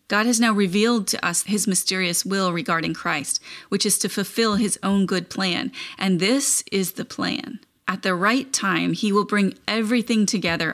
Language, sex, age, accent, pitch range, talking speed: English, female, 30-49, American, 180-220 Hz, 185 wpm